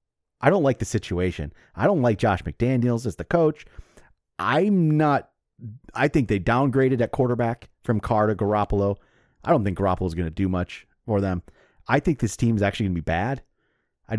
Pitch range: 105-140 Hz